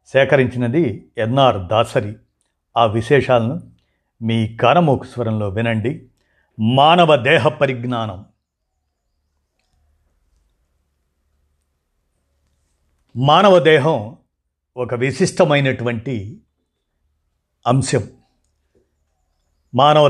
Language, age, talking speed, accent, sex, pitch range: Telugu, 50-69, 55 wpm, native, male, 100-140 Hz